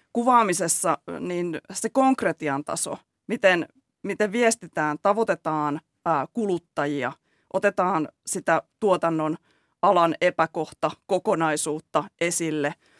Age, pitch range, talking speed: 30-49, 160-205 Hz, 85 wpm